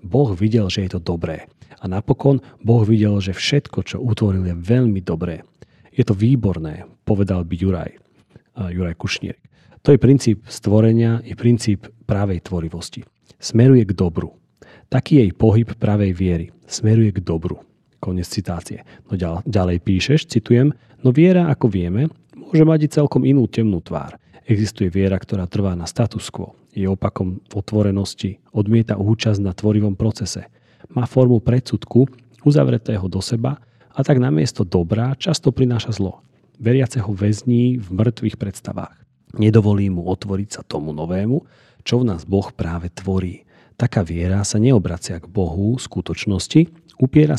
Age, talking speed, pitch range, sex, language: 40-59, 150 wpm, 95-120 Hz, male, Slovak